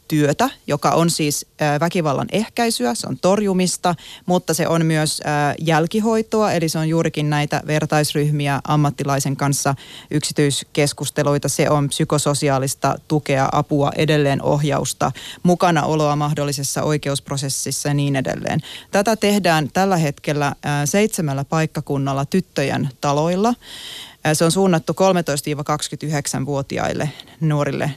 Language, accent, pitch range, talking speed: Finnish, native, 145-170 Hz, 105 wpm